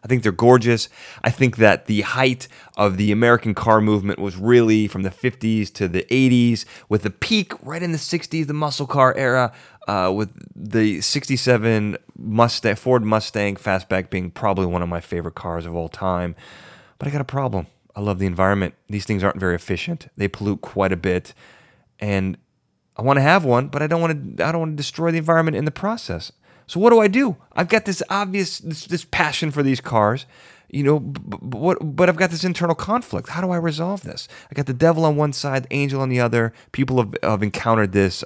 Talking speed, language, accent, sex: 215 wpm, English, American, male